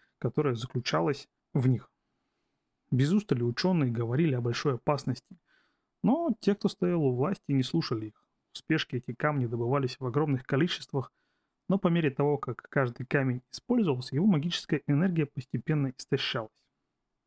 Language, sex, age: Russian, male, 30-49